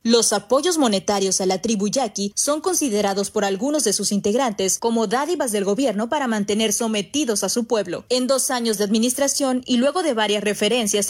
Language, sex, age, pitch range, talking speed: Spanish, female, 20-39, 205-260 Hz, 185 wpm